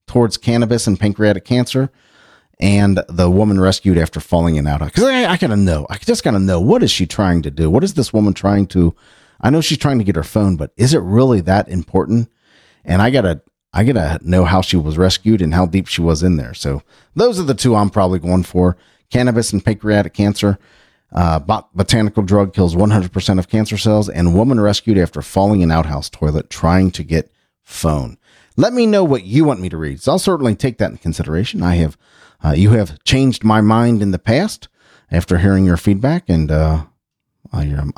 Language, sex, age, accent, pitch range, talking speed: English, male, 40-59, American, 90-120 Hz, 215 wpm